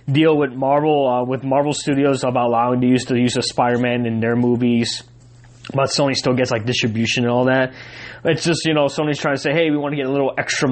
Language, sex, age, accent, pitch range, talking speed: English, male, 20-39, American, 125-165 Hz, 240 wpm